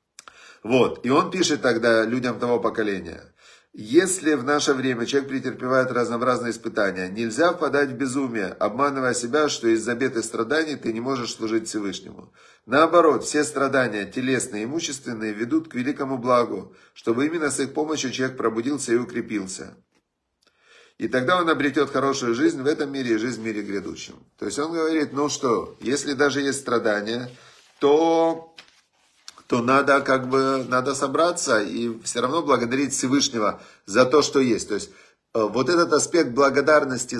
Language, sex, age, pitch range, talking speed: Russian, male, 40-59, 115-145 Hz, 155 wpm